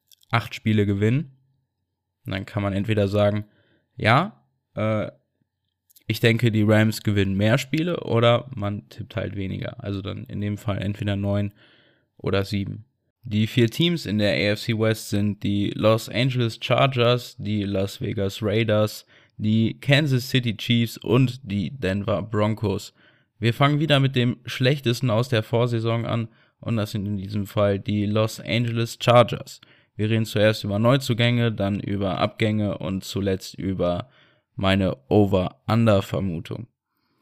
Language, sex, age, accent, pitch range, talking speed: German, male, 20-39, German, 105-125 Hz, 145 wpm